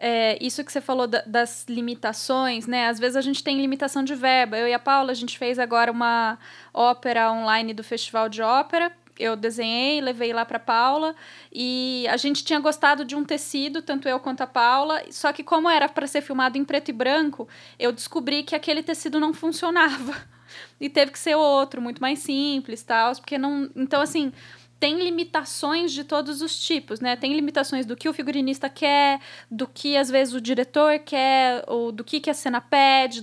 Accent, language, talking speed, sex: Brazilian, Portuguese, 200 wpm, female